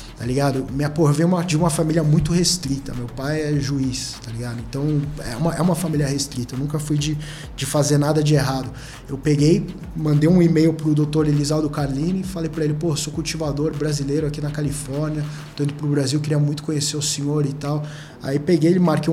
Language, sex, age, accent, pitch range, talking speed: Portuguese, male, 20-39, Brazilian, 145-160 Hz, 210 wpm